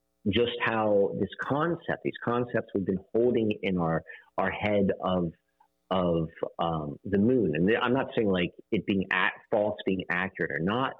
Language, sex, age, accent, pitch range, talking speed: English, male, 40-59, American, 85-110 Hz, 165 wpm